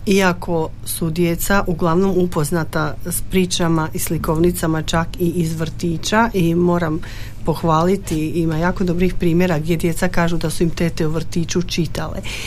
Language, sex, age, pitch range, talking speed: Croatian, female, 40-59, 160-180 Hz, 145 wpm